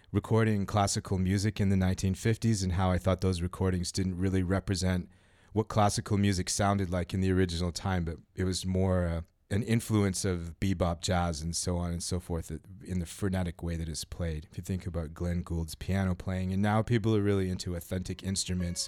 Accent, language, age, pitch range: American, English, 30-49, 85-95 Hz